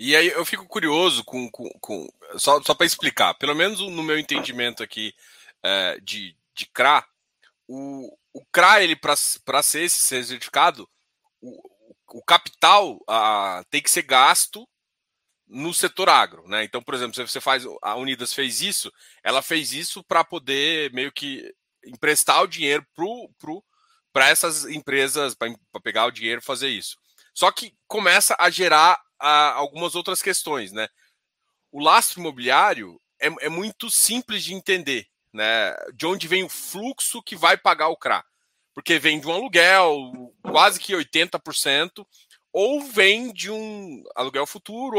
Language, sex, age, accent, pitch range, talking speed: Portuguese, male, 20-39, Brazilian, 140-205 Hz, 155 wpm